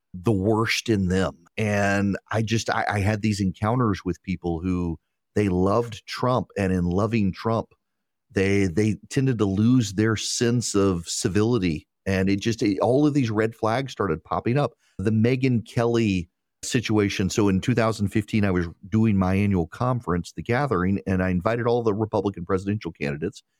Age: 40-59